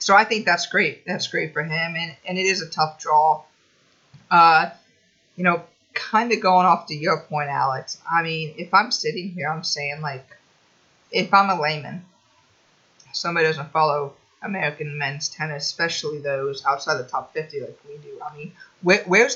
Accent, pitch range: American, 155-195 Hz